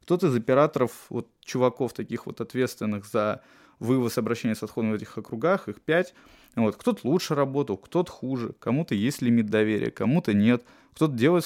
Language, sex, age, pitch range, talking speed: Russian, male, 20-39, 110-150 Hz, 170 wpm